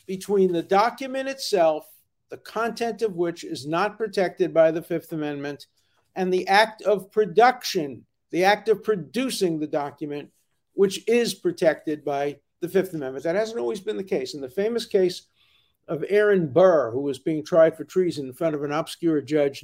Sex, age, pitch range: male, 50-69, 155-205 Hz